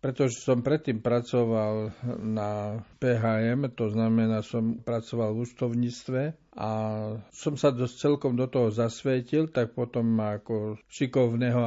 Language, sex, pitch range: Slovak, male, 110-125 Hz